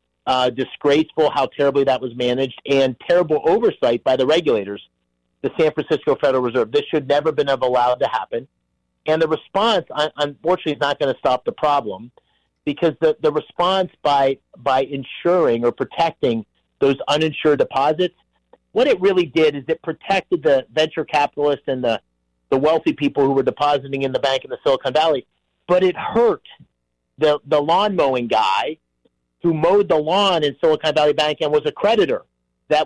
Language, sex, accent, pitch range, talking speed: English, male, American, 135-175 Hz, 175 wpm